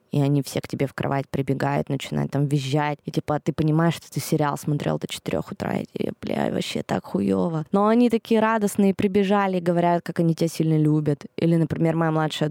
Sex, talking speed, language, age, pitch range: female, 210 wpm, Russian, 20-39, 155-210 Hz